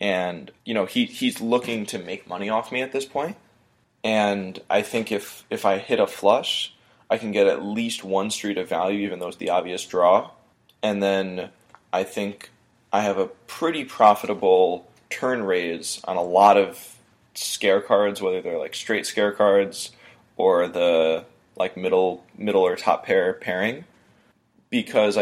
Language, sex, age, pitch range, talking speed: English, male, 20-39, 95-145 Hz, 170 wpm